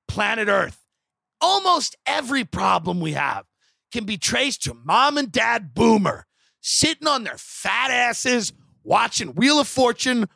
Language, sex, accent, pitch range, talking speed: English, male, American, 215-285 Hz, 140 wpm